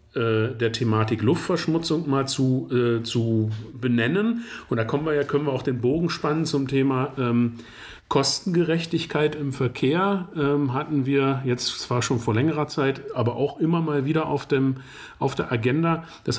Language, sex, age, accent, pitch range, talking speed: German, male, 40-59, German, 130-160 Hz, 165 wpm